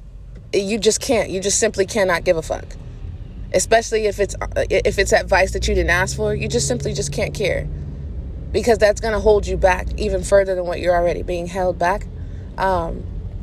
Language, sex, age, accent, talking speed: English, female, 20-39, American, 195 wpm